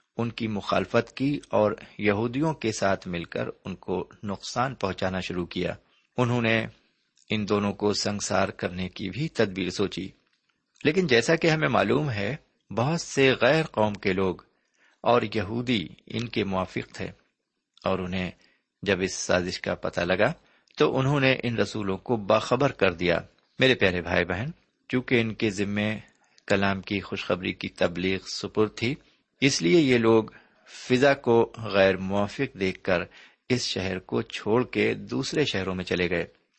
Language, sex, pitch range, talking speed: Urdu, male, 95-120 Hz, 160 wpm